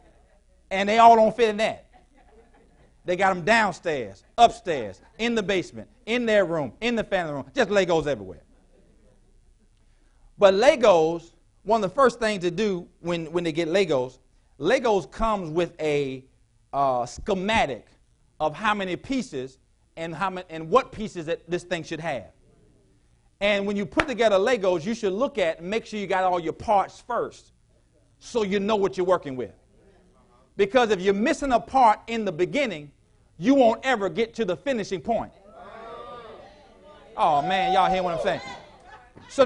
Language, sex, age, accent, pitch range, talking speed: English, male, 40-59, American, 180-275 Hz, 170 wpm